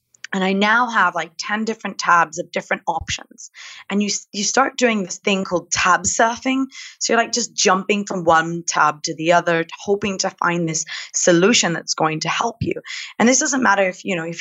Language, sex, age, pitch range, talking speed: English, female, 20-39, 175-230 Hz, 210 wpm